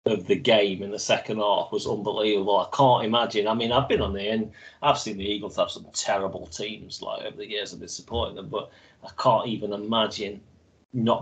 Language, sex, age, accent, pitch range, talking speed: English, male, 30-49, British, 100-110 Hz, 220 wpm